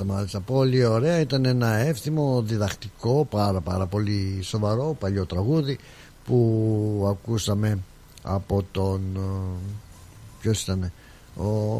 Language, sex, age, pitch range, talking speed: Greek, male, 60-79, 95-125 Hz, 100 wpm